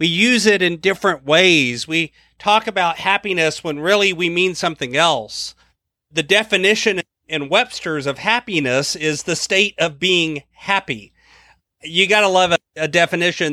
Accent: American